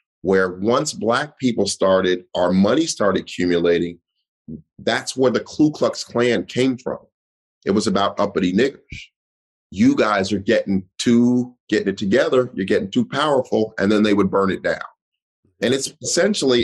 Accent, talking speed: American, 160 wpm